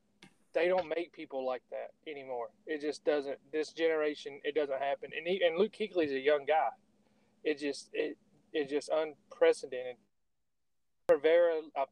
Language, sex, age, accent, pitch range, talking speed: English, male, 30-49, American, 140-205 Hz, 160 wpm